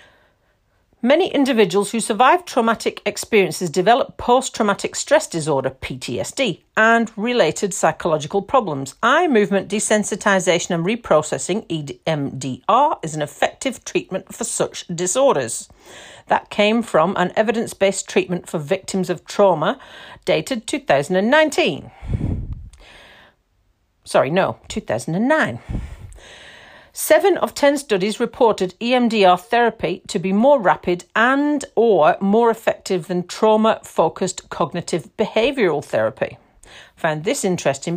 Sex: female